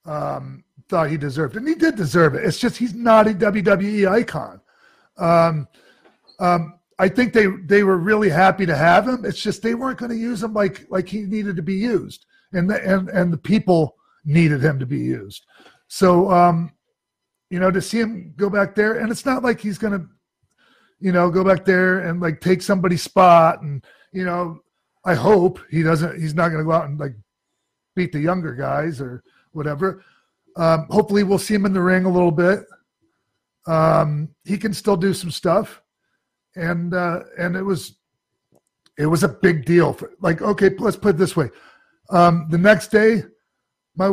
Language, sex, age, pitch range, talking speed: English, male, 40-59, 165-205 Hz, 195 wpm